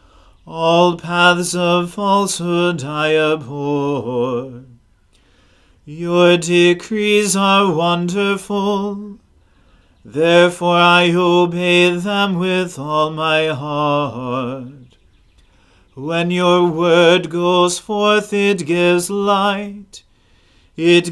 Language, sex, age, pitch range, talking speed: English, male, 40-59, 150-185 Hz, 75 wpm